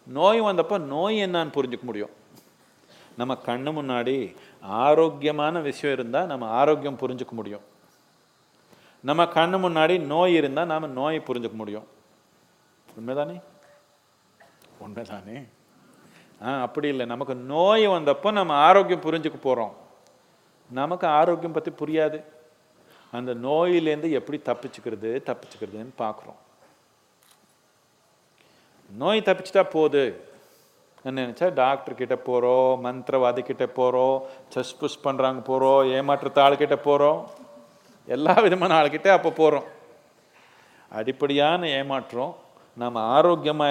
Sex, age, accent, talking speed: male, 40-59, native, 100 wpm